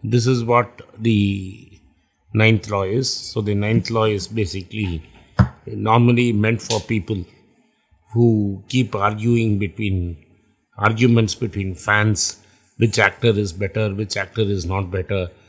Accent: native